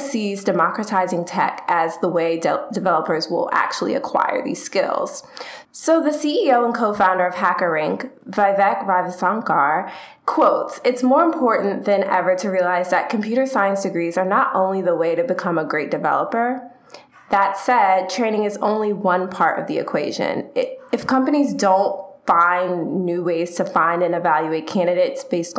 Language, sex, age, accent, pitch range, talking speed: English, female, 20-39, American, 175-220 Hz, 150 wpm